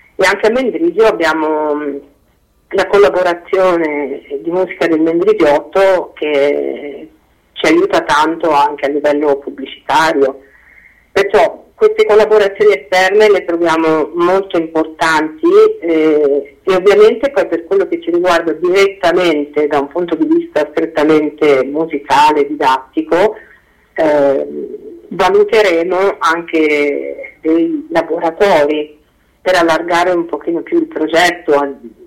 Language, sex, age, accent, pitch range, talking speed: Italian, female, 50-69, native, 155-195 Hz, 105 wpm